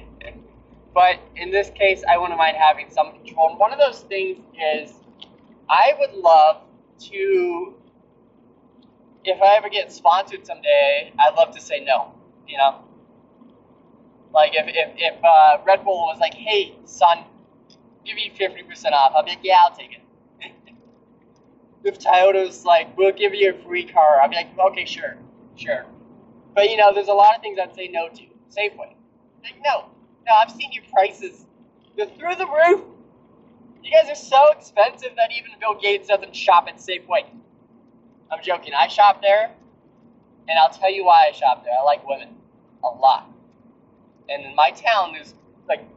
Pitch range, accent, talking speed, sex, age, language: 175-285 Hz, American, 170 wpm, male, 20-39, English